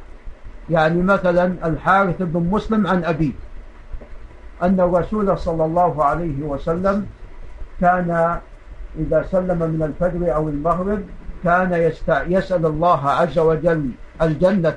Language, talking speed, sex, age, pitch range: Arabic, 105 wpm, male, 50-69, 150-185 Hz